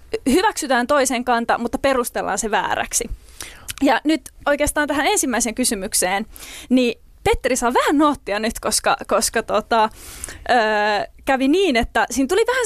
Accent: native